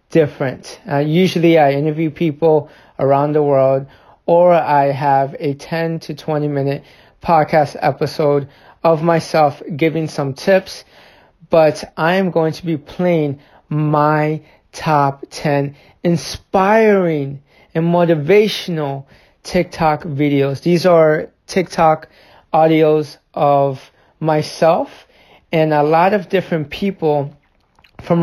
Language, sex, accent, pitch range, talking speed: English, male, American, 145-165 Hz, 110 wpm